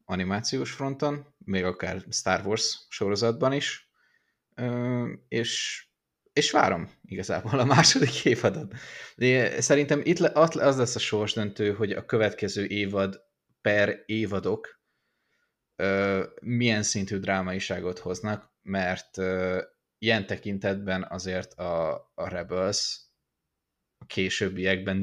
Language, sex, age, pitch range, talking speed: Hungarian, male, 20-39, 95-115 Hz, 100 wpm